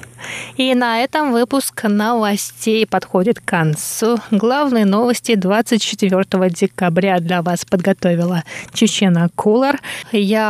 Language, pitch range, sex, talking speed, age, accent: Russian, 185-230 Hz, female, 105 wpm, 20-39, native